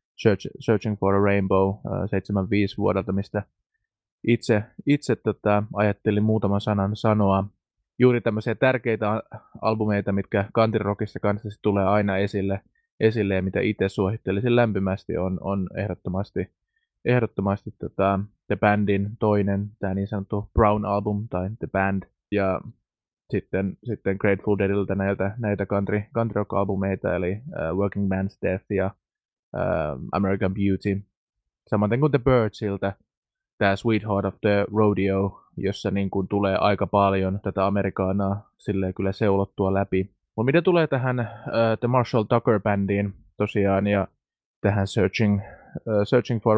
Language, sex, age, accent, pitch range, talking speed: Finnish, male, 20-39, native, 100-110 Hz, 135 wpm